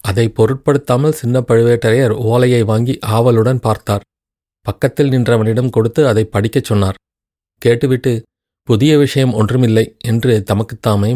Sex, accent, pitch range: male, native, 105-130 Hz